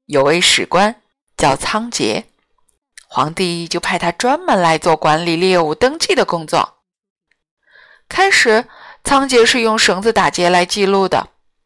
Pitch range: 185-280 Hz